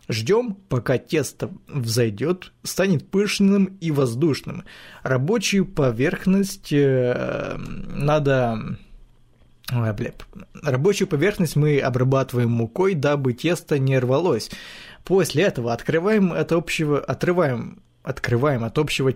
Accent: native